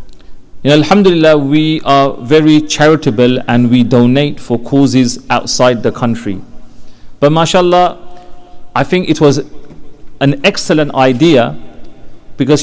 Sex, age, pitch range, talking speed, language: male, 40-59, 130-160 Hz, 125 wpm, English